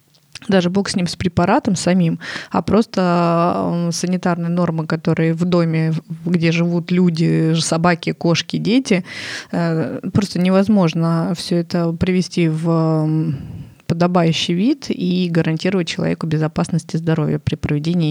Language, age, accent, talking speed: Russian, 20-39, native, 120 wpm